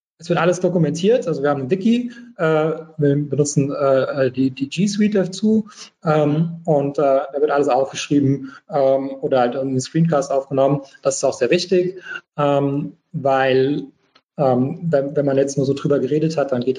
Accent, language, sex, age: German, German, male, 30-49